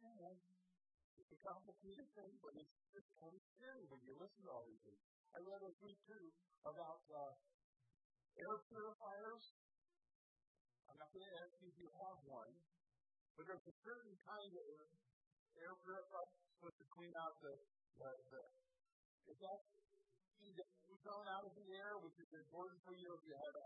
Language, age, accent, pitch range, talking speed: English, 50-69, American, 155-220 Hz, 185 wpm